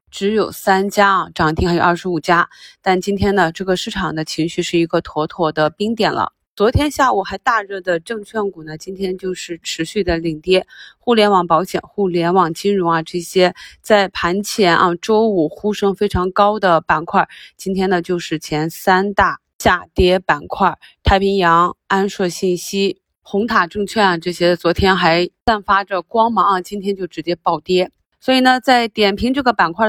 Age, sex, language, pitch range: 20-39, female, Chinese, 170-200 Hz